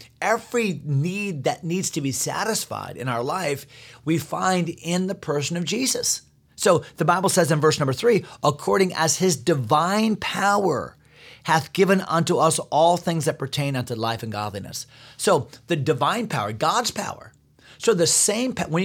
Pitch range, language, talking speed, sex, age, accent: 130-175 Hz, English, 165 wpm, male, 40-59, American